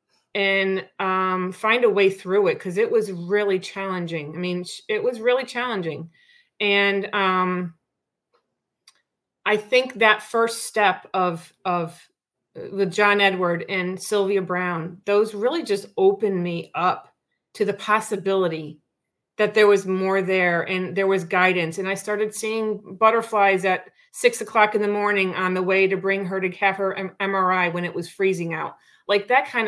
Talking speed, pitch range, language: 160 wpm, 185-220 Hz, English